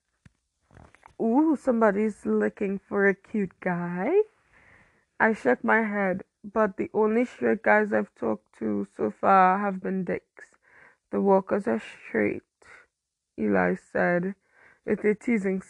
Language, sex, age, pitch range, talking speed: English, female, 20-39, 180-220 Hz, 125 wpm